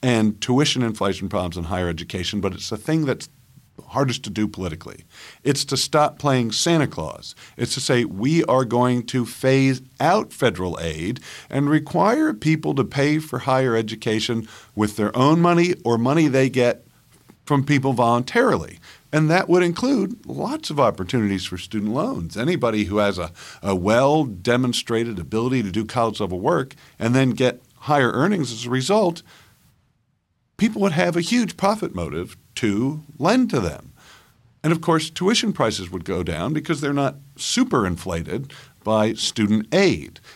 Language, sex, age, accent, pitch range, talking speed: English, male, 50-69, American, 105-145 Hz, 160 wpm